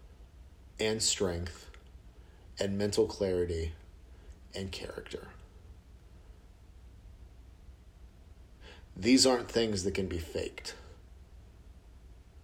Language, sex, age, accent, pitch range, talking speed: English, male, 40-59, American, 80-100 Hz, 70 wpm